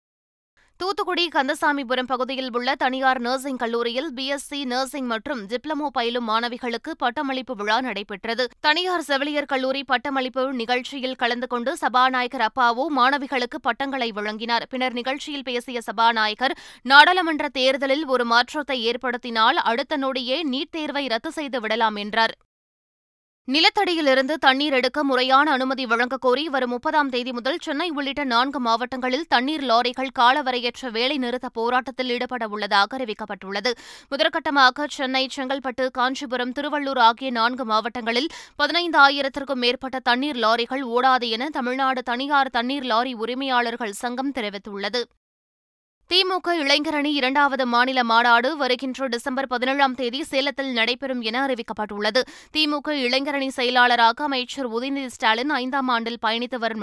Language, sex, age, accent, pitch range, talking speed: Tamil, female, 20-39, native, 240-280 Hz, 115 wpm